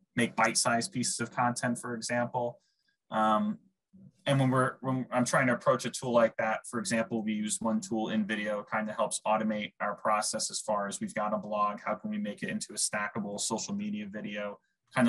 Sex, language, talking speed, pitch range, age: male, English, 210 wpm, 110-150 Hz, 20-39